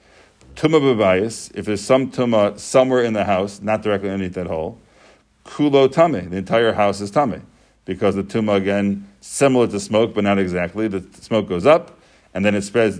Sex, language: male, English